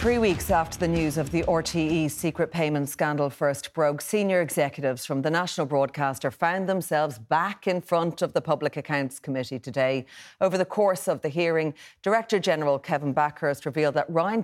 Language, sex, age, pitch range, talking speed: English, female, 40-59, 140-170 Hz, 180 wpm